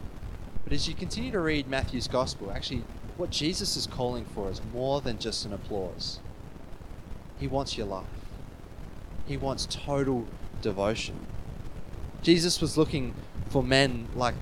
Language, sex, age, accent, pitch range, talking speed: English, male, 20-39, Australian, 105-135 Hz, 140 wpm